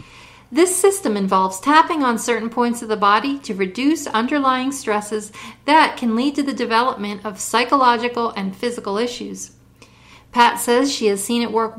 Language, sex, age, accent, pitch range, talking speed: English, female, 40-59, American, 200-250 Hz, 165 wpm